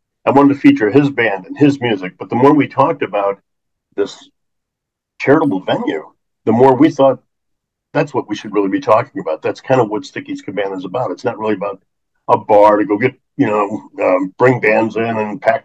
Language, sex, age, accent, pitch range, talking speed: English, male, 50-69, American, 100-135 Hz, 210 wpm